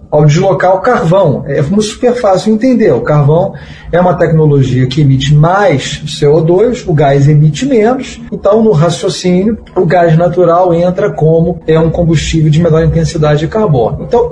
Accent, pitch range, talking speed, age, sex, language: Brazilian, 150-215 Hz, 160 wpm, 40-59, male, Portuguese